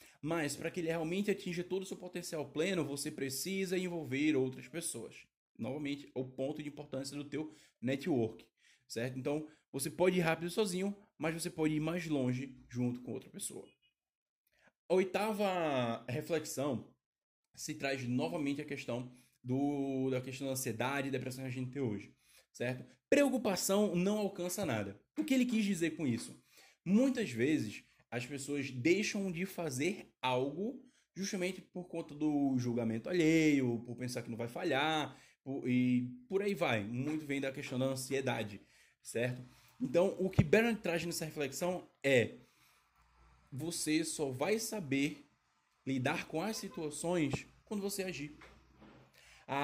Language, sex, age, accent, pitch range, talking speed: Portuguese, male, 10-29, Brazilian, 130-180 Hz, 150 wpm